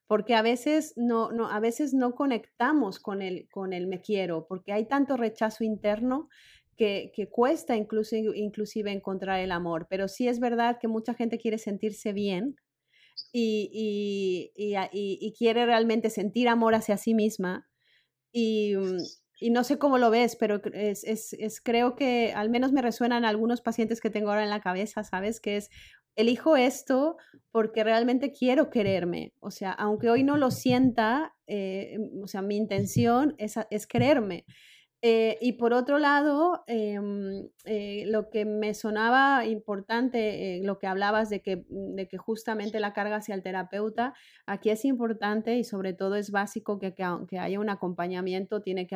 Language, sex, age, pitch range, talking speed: Spanish, female, 30-49, 190-235 Hz, 175 wpm